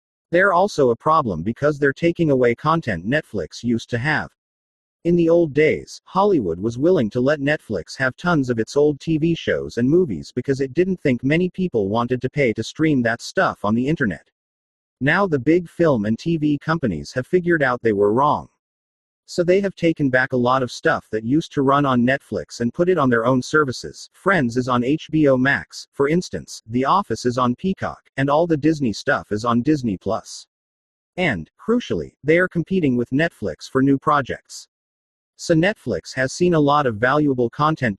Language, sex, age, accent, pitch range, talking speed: English, male, 40-59, American, 115-160 Hz, 195 wpm